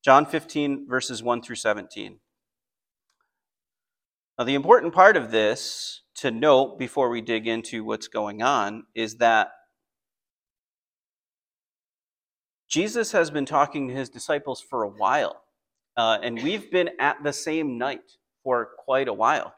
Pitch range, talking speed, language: 115-155 Hz, 140 wpm, English